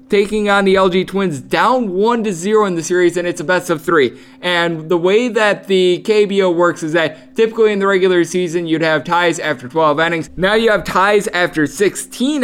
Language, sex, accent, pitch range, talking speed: English, male, American, 155-200 Hz, 210 wpm